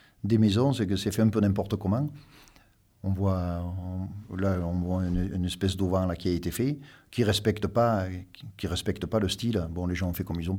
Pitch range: 90-110 Hz